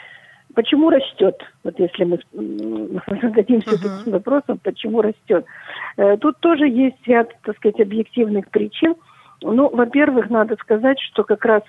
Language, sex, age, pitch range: Russian, female, 50-69, 185-225 Hz